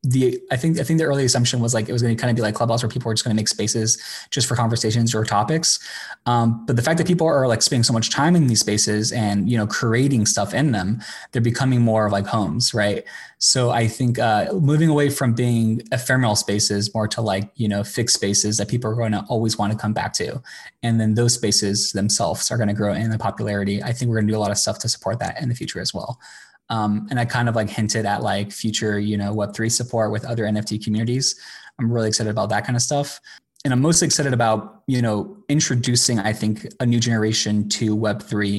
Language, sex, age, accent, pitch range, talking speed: English, male, 20-39, American, 110-125 Hz, 240 wpm